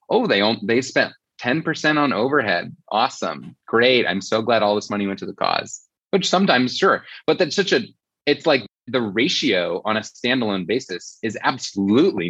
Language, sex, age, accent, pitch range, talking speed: English, male, 30-49, American, 100-140 Hz, 180 wpm